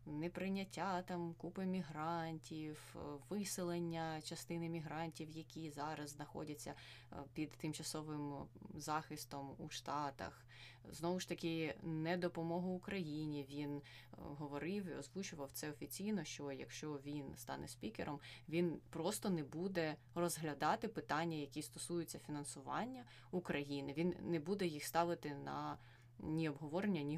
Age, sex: 20-39, female